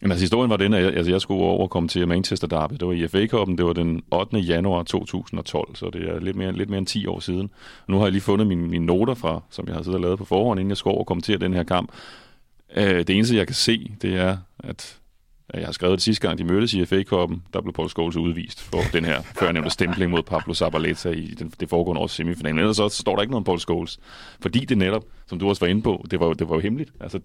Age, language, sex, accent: 30-49, Danish, male, native